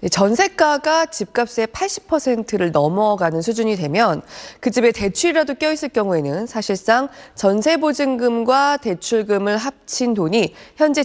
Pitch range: 180-285 Hz